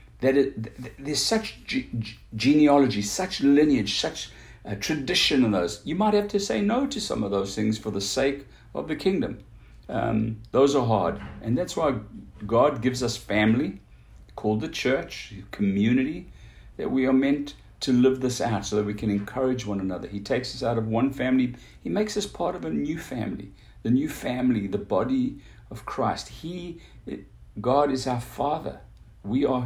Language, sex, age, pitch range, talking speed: English, male, 60-79, 105-135 Hz, 180 wpm